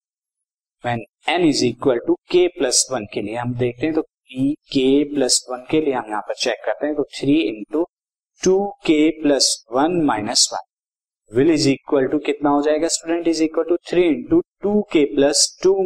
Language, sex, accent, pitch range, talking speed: Hindi, male, native, 140-200 Hz, 180 wpm